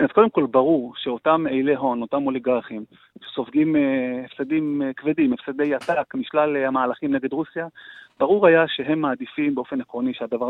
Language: Hebrew